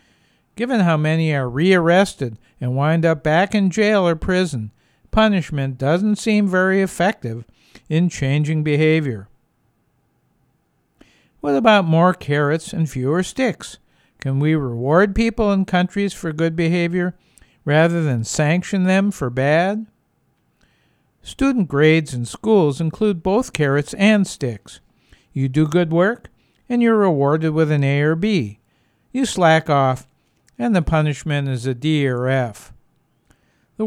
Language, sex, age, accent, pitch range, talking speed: English, male, 60-79, American, 135-185 Hz, 135 wpm